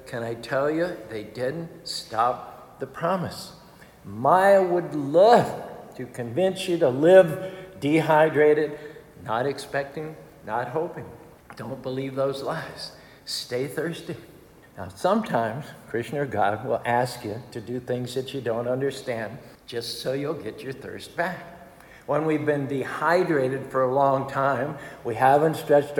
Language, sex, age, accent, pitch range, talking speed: English, male, 60-79, American, 125-165 Hz, 140 wpm